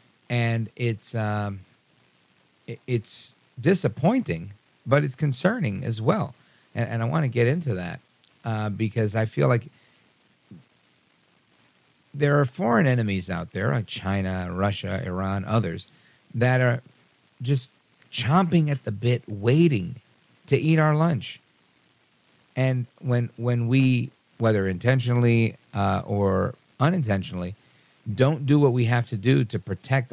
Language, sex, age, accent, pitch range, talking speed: English, male, 50-69, American, 105-140 Hz, 125 wpm